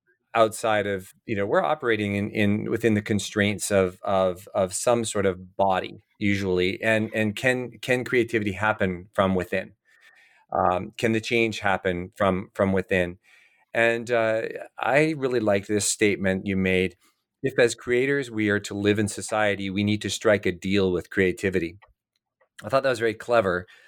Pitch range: 95-115 Hz